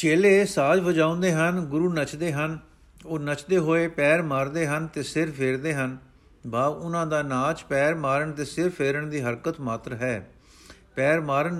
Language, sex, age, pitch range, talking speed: Punjabi, male, 50-69, 135-165 Hz, 165 wpm